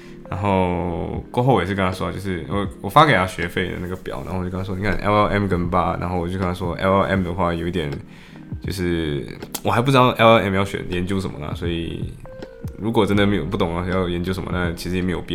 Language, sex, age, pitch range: Chinese, male, 20-39, 85-105 Hz